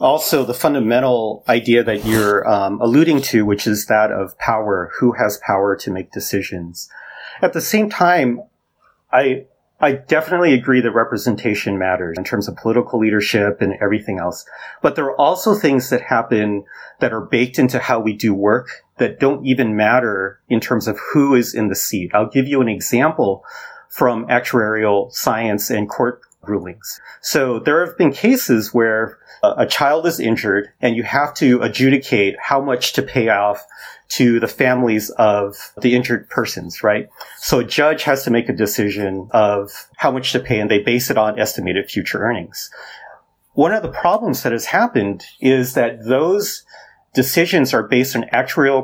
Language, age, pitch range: English, 30-49, 105-130 Hz